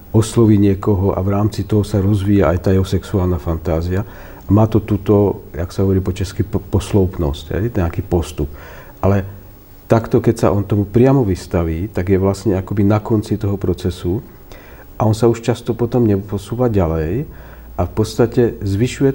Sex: male